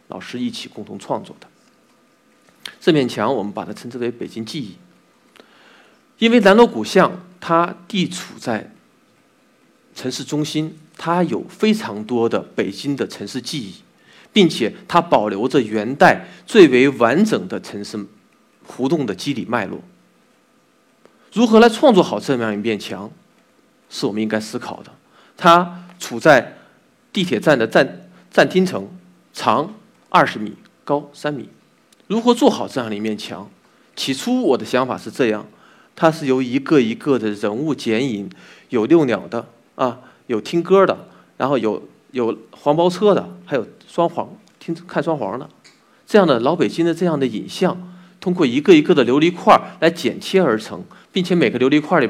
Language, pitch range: Chinese, 130-205 Hz